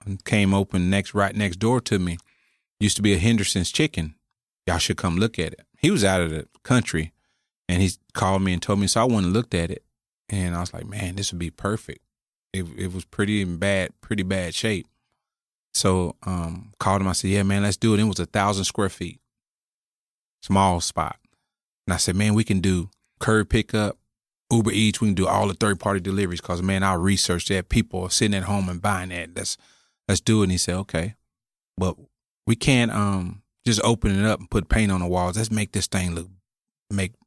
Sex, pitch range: male, 90-110 Hz